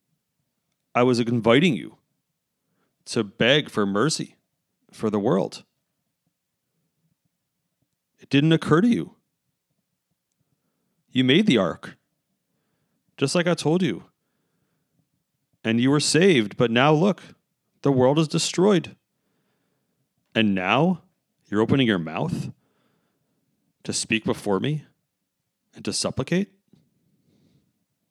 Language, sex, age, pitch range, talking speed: English, male, 40-59, 95-155 Hz, 105 wpm